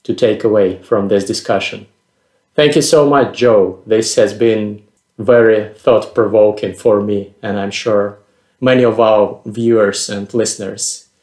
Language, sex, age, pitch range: English, male, 30-49, 105-120 Hz